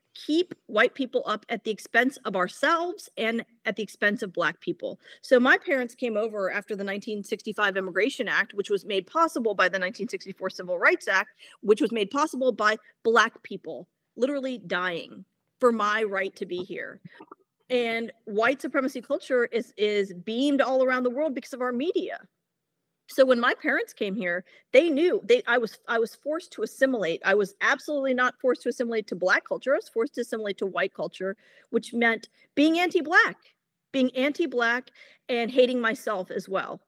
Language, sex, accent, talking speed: English, female, American, 180 wpm